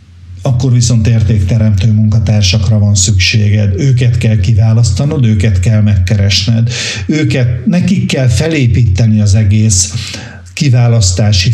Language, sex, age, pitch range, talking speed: Hungarian, male, 60-79, 100-120 Hz, 100 wpm